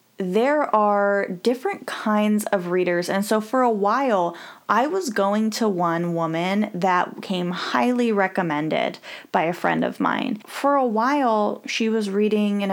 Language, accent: English, American